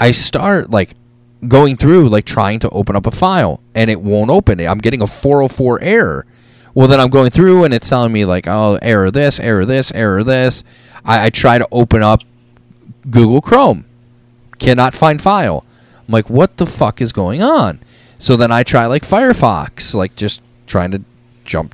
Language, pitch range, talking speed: English, 110-150 Hz, 195 wpm